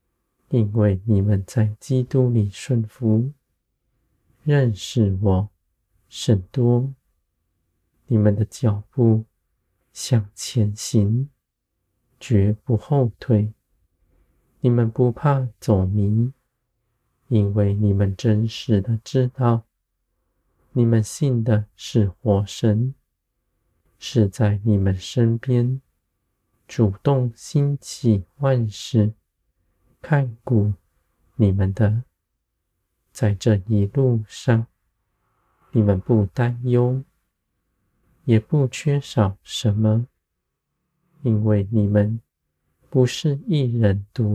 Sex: male